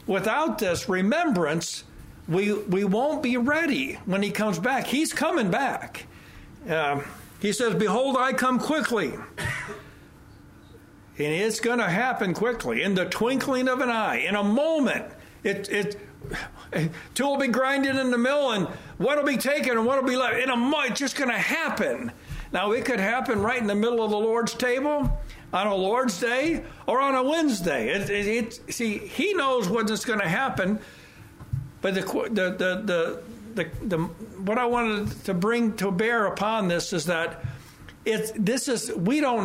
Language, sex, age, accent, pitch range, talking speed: English, male, 60-79, American, 190-250 Hz, 180 wpm